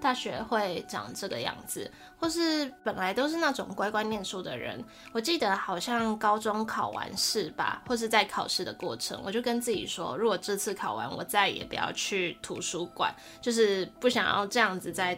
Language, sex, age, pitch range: Chinese, female, 20-39, 195-245 Hz